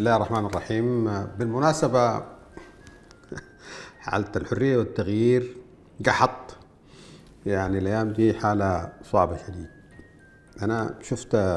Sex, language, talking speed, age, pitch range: male, Arabic, 90 wpm, 50-69, 95-125 Hz